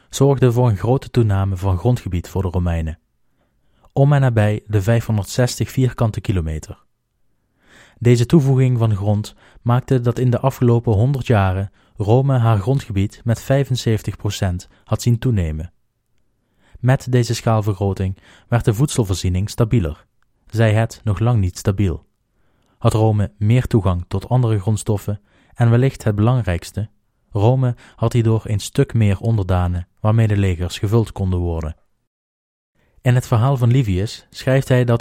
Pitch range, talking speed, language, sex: 100-125 Hz, 140 wpm, Dutch, male